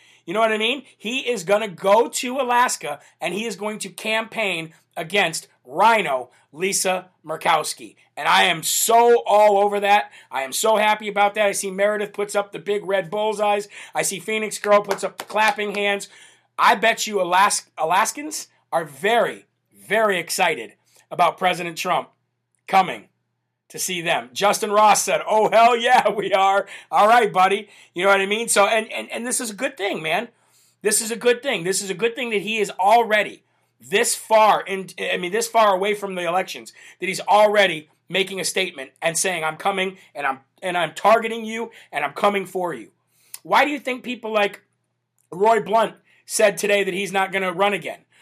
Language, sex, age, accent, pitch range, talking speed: English, male, 40-59, American, 190-220 Hz, 195 wpm